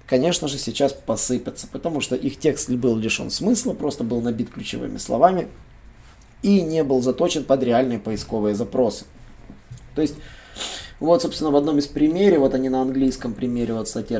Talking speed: 165 wpm